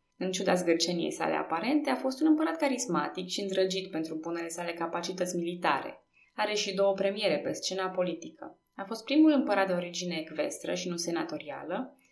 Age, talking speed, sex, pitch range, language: 20-39, 170 wpm, female, 180-255 Hz, Romanian